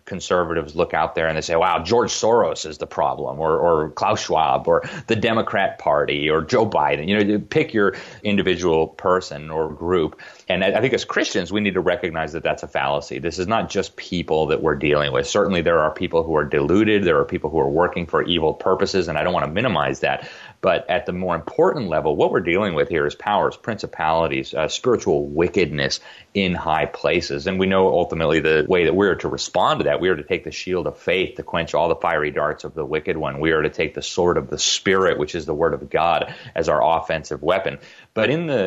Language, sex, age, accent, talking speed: English, male, 30-49, American, 235 wpm